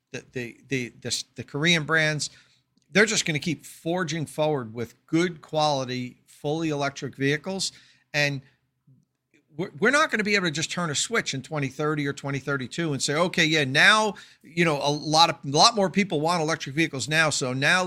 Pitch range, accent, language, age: 135-165 Hz, American, English, 50-69